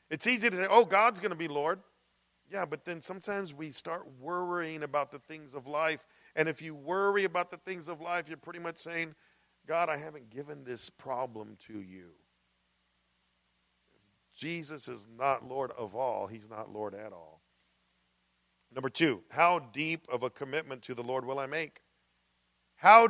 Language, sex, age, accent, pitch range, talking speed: English, male, 50-69, American, 120-195 Hz, 175 wpm